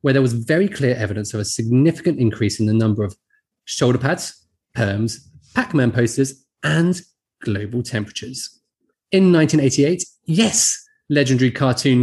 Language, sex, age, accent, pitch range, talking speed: English, male, 30-49, British, 115-150 Hz, 135 wpm